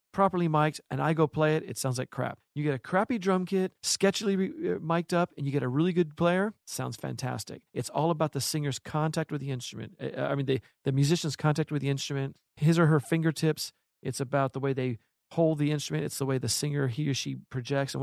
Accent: American